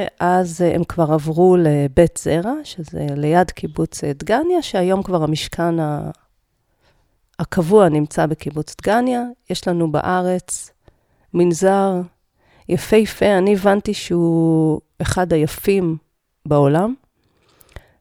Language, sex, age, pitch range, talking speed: Hebrew, female, 40-59, 165-205 Hz, 95 wpm